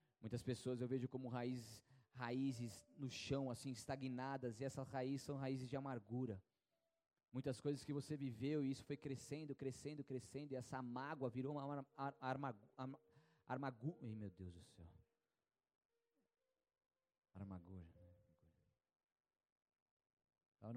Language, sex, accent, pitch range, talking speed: Portuguese, male, Brazilian, 125-160 Hz, 130 wpm